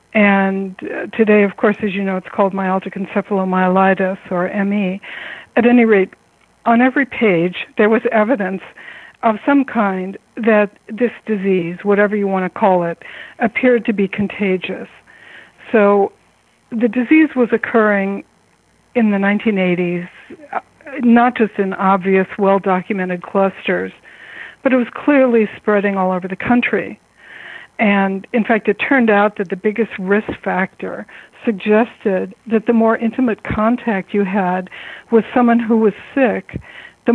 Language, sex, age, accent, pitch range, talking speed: English, female, 60-79, American, 195-230 Hz, 140 wpm